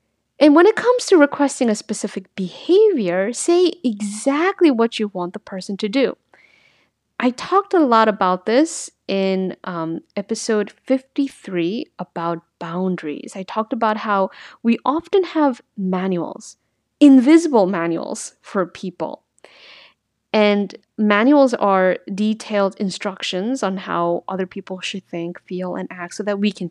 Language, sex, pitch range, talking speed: English, female, 185-255 Hz, 135 wpm